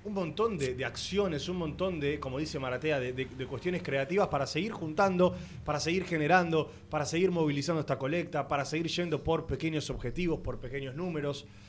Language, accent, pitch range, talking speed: Spanish, Argentinian, 125-175 Hz, 185 wpm